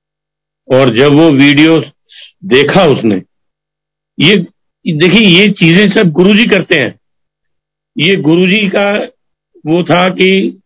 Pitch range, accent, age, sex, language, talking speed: 145-175 Hz, native, 50-69, male, Hindi, 115 wpm